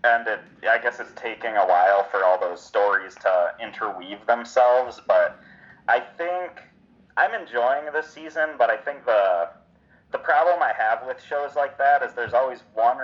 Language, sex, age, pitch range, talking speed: English, male, 30-49, 105-145 Hz, 175 wpm